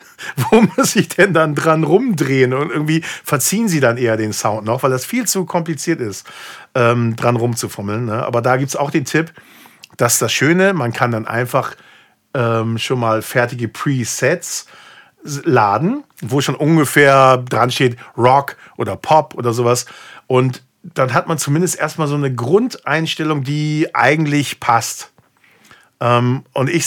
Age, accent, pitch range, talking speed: 50-69, German, 120-155 Hz, 160 wpm